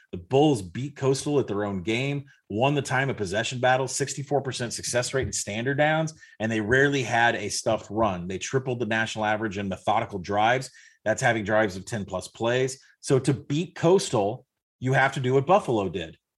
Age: 30-49